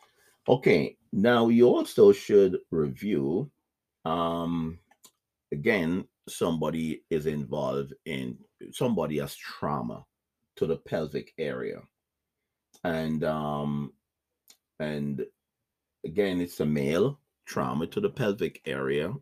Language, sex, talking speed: English, male, 95 wpm